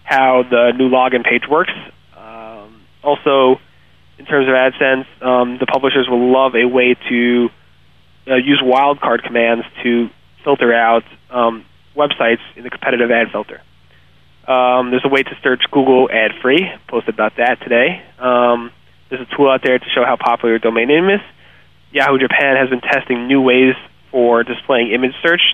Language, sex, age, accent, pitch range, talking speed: English, male, 20-39, American, 115-135 Hz, 170 wpm